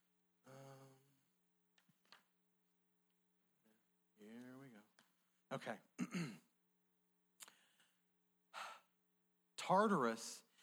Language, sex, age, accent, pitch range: English, male, 50-69, American, 125-175 Hz